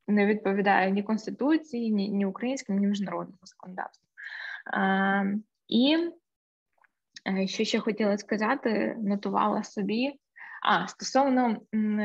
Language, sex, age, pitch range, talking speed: Ukrainian, female, 20-39, 200-245 Hz, 100 wpm